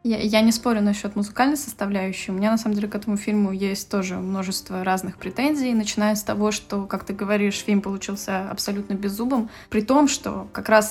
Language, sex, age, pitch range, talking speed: Russian, female, 20-39, 200-235 Hz, 200 wpm